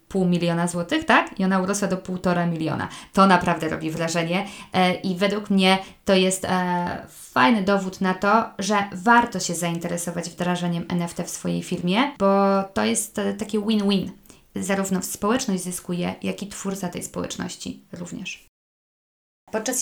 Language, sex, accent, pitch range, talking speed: Polish, female, native, 180-200 Hz, 155 wpm